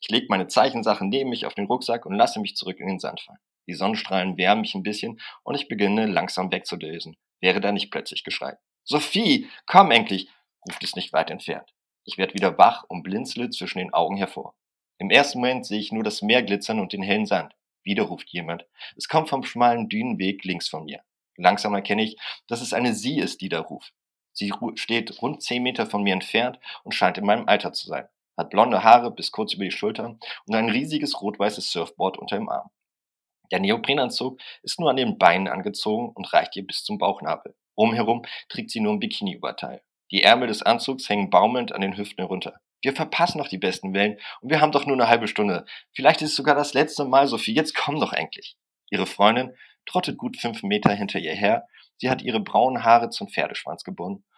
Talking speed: 210 wpm